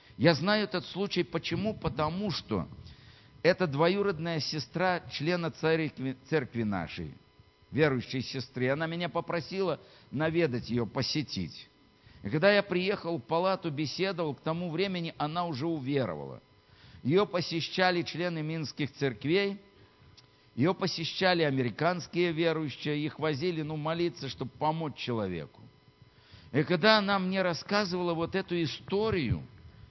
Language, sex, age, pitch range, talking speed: Russian, male, 60-79, 135-185 Hz, 120 wpm